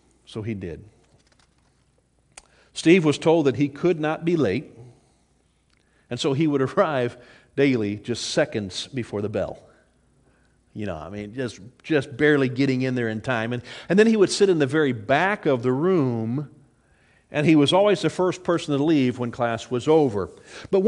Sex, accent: male, American